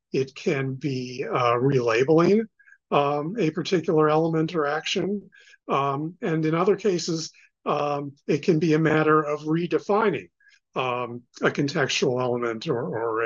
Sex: male